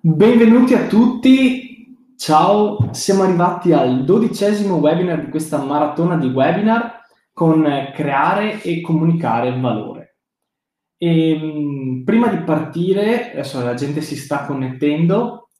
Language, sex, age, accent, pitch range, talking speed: Italian, male, 20-39, native, 135-175 Hz, 110 wpm